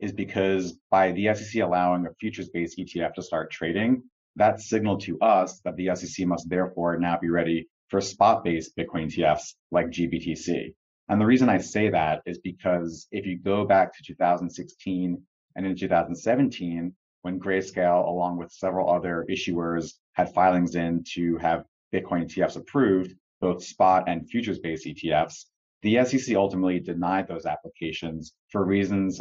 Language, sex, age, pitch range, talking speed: English, male, 30-49, 85-100 Hz, 155 wpm